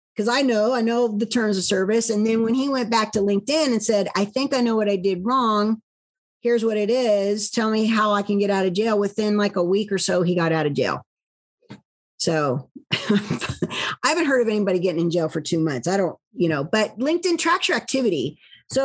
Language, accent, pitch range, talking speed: English, American, 200-250 Hz, 230 wpm